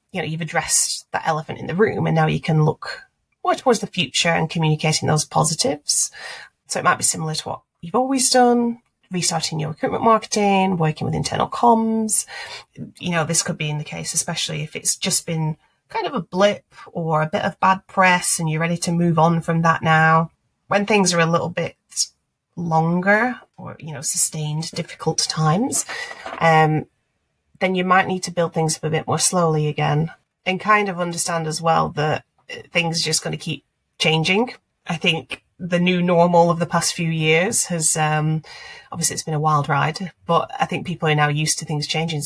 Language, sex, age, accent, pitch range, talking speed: English, female, 30-49, British, 155-185 Hz, 200 wpm